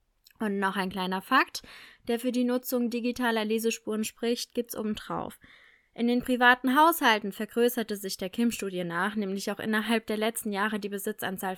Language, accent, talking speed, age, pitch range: German, German, 160 wpm, 20-39, 210-255 Hz